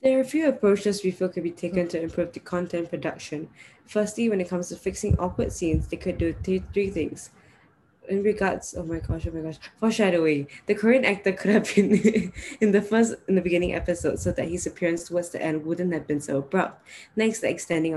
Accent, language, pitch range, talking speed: Malaysian, English, 155-190 Hz, 220 wpm